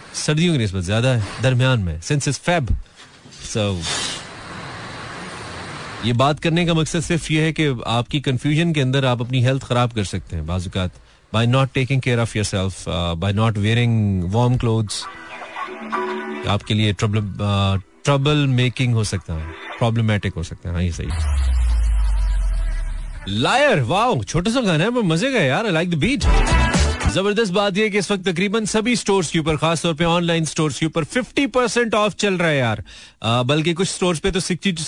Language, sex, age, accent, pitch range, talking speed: Hindi, male, 30-49, native, 115-165 Hz, 150 wpm